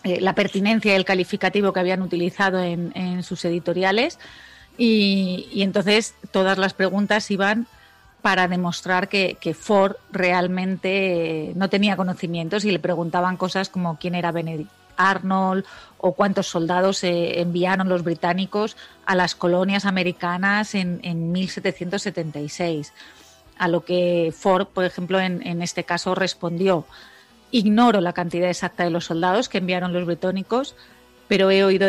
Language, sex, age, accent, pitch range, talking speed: Spanish, female, 30-49, Spanish, 175-200 Hz, 140 wpm